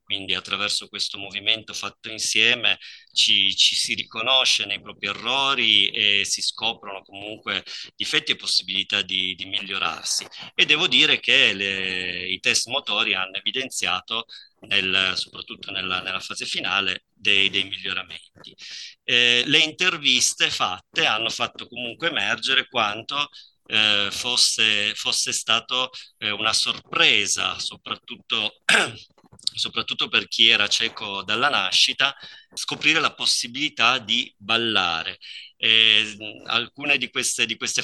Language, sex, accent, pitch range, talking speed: Italian, male, native, 100-120 Hz, 115 wpm